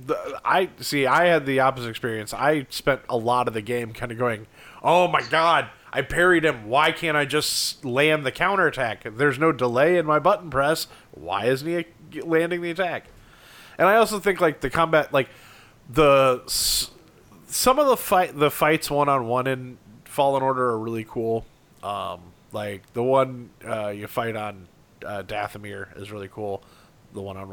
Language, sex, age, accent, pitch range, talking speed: English, male, 30-49, American, 115-150 Hz, 185 wpm